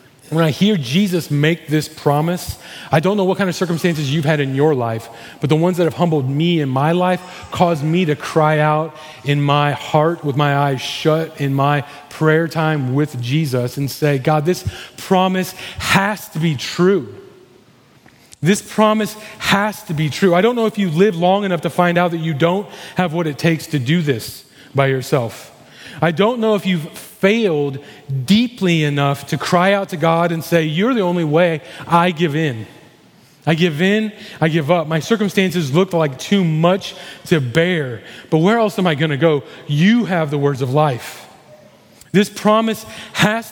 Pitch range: 150-185 Hz